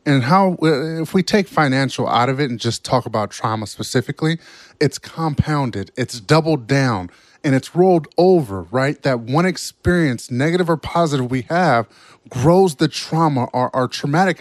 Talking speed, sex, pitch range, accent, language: 160 wpm, male, 125-170 Hz, American, English